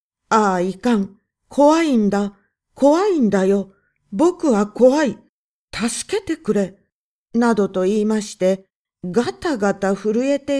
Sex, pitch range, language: female, 190-250 Hz, Japanese